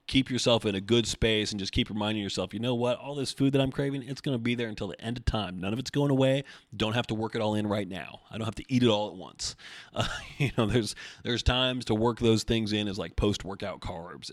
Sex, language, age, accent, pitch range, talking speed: male, English, 30-49, American, 100-125 Hz, 285 wpm